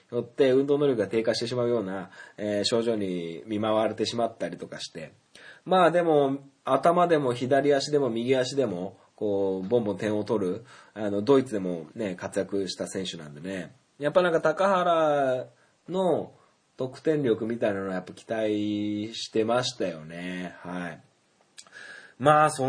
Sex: male